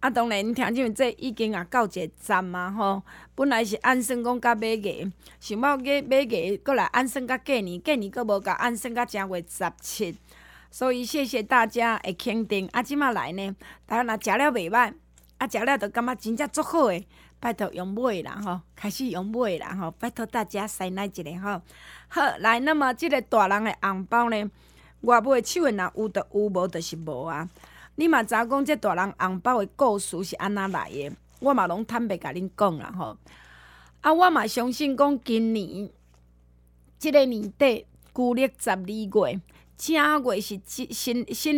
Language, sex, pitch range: Chinese, female, 190-255 Hz